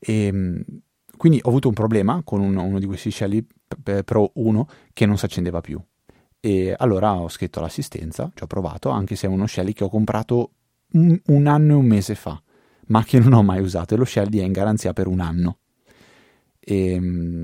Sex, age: male, 30-49